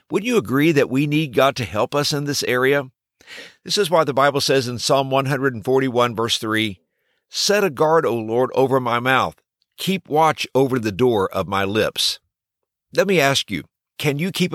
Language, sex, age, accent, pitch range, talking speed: English, male, 50-69, American, 125-165 Hz, 195 wpm